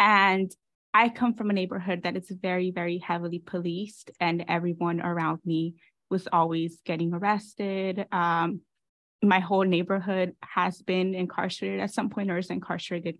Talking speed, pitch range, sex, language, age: 150 wpm, 175-205 Hz, female, English, 20-39